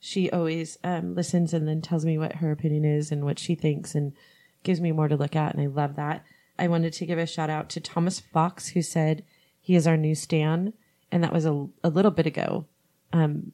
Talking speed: 235 wpm